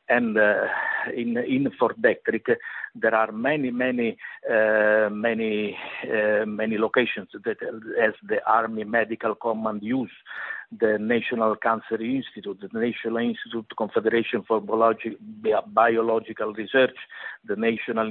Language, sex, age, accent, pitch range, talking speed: English, male, 60-79, Italian, 110-140 Hz, 115 wpm